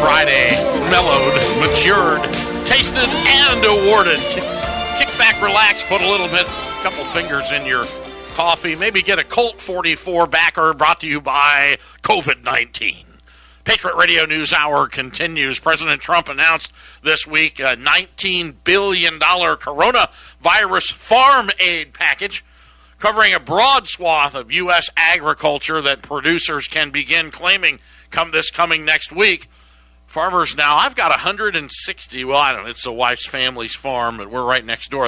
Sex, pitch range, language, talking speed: male, 130-175 Hz, English, 145 wpm